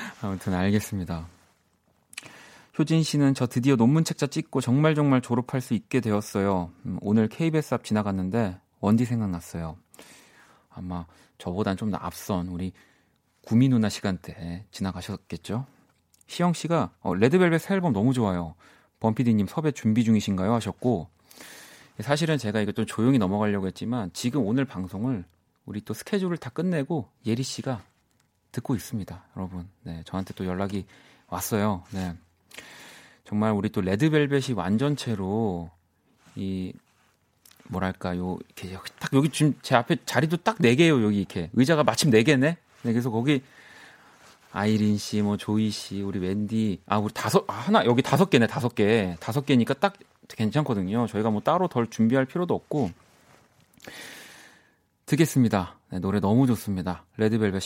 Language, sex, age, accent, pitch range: Korean, male, 30-49, native, 95-135 Hz